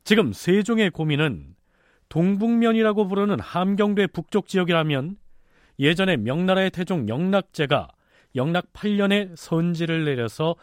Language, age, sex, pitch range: Korean, 40-59, male, 120-185 Hz